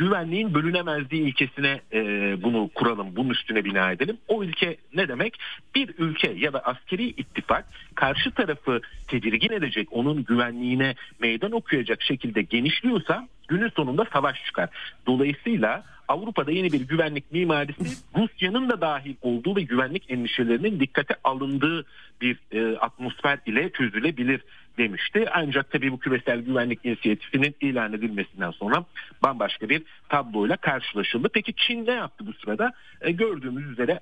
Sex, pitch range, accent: male, 120-180 Hz, native